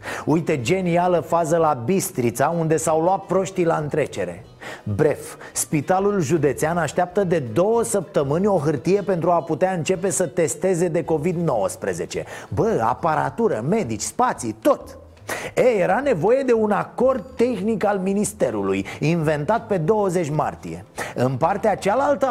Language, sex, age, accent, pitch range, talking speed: Romanian, male, 30-49, native, 165-220 Hz, 130 wpm